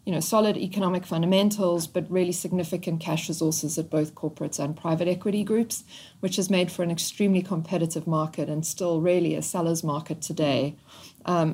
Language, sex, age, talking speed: English, female, 40-59, 170 wpm